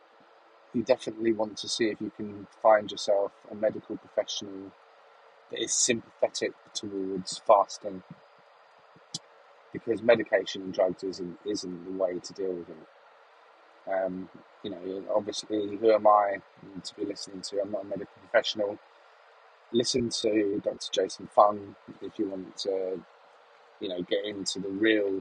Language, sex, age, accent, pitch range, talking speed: English, male, 30-49, British, 95-115 Hz, 145 wpm